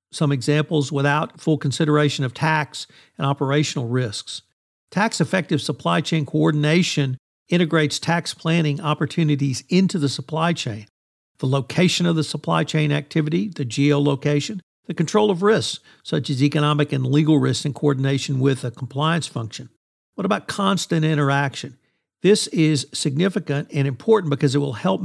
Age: 50-69